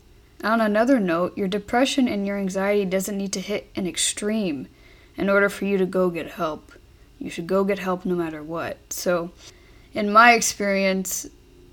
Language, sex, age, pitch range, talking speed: English, female, 20-39, 180-210 Hz, 175 wpm